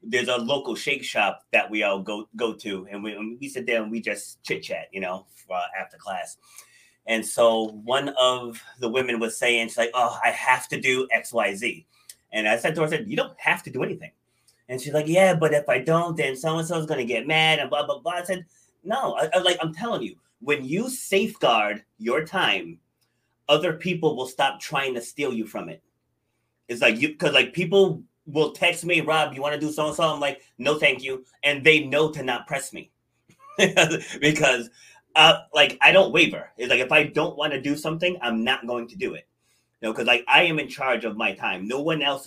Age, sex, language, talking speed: 30-49, male, English, 225 wpm